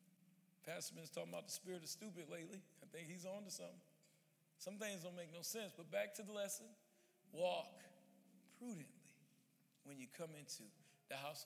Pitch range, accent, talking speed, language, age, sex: 160-190 Hz, American, 180 wpm, English, 40-59, male